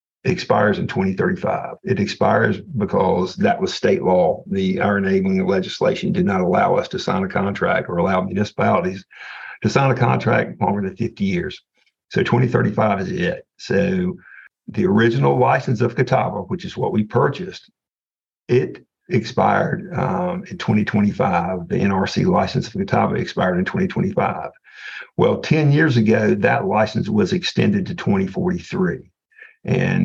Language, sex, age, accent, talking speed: English, male, 60-79, American, 140 wpm